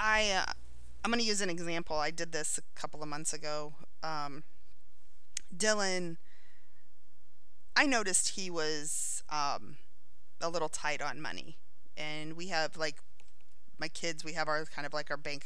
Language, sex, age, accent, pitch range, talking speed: English, female, 30-49, American, 155-215 Hz, 165 wpm